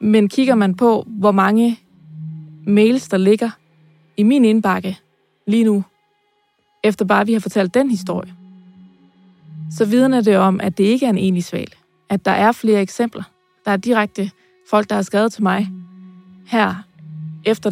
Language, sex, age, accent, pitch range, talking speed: Danish, female, 20-39, native, 190-235 Hz, 160 wpm